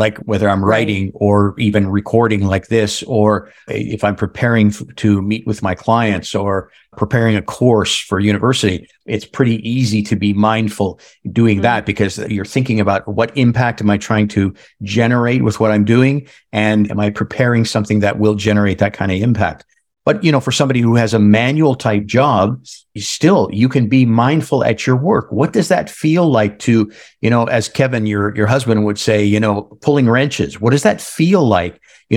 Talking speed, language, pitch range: 195 wpm, English, 105-125 Hz